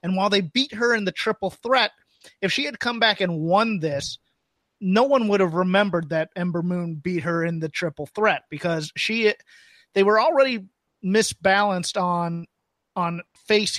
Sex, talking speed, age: male, 175 wpm, 30-49